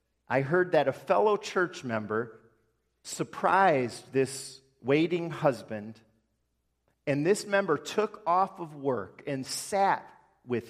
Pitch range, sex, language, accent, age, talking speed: 120-175 Hz, male, English, American, 40-59, 120 wpm